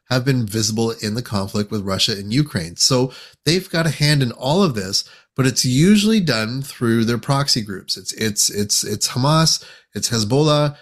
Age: 30-49